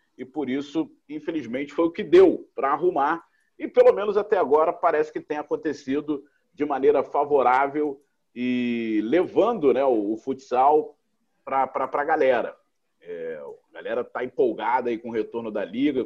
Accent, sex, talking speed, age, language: Brazilian, male, 155 wpm, 40-59, Portuguese